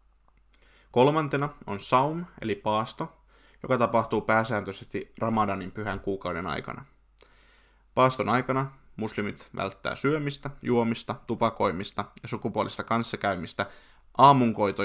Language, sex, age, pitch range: Finnish, male, 20-39, 100-120 Hz